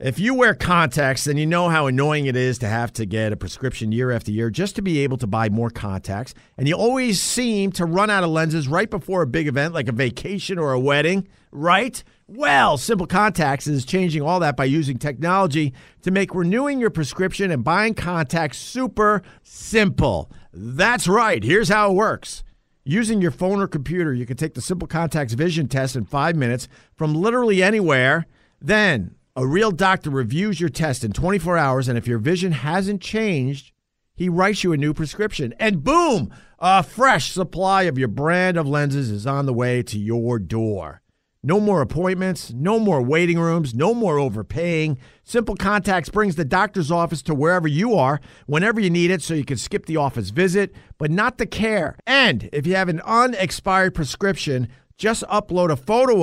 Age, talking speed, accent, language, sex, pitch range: 50-69, 190 wpm, American, English, male, 135-195 Hz